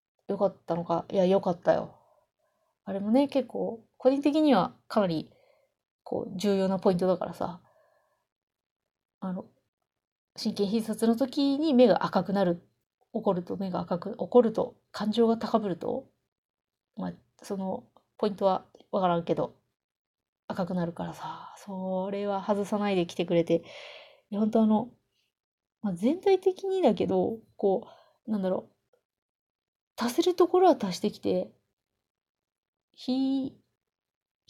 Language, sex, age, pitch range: Japanese, female, 30-49, 195-275 Hz